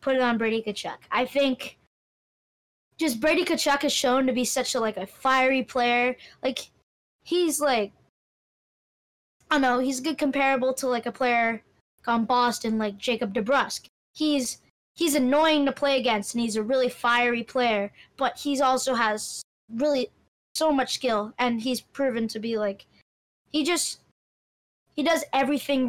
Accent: American